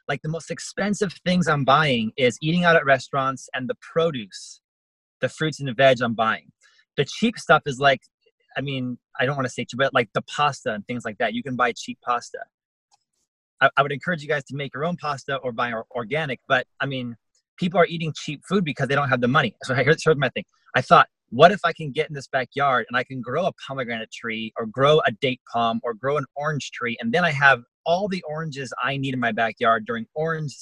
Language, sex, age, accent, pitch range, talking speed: English, male, 30-49, American, 125-160 Hz, 235 wpm